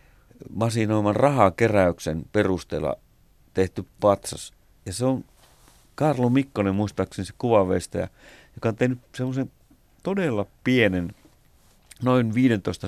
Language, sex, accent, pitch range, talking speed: Finnish, male, native, 90-115 Hz, 100 wpm